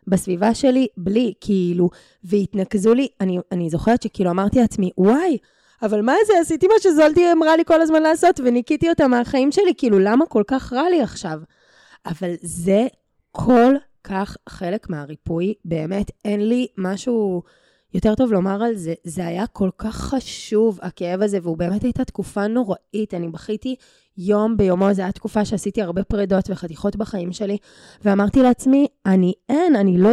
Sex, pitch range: female, 185-240 Hz